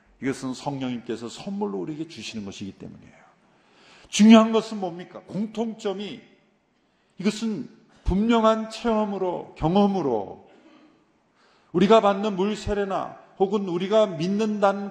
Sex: male